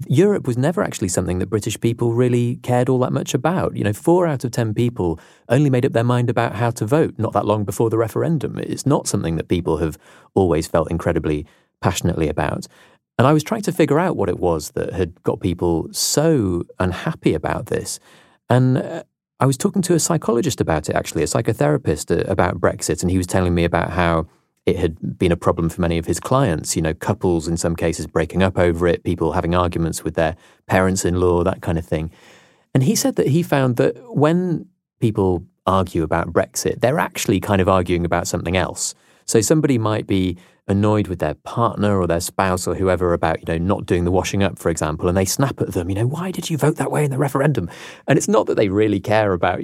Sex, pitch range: male, 85-130 Hz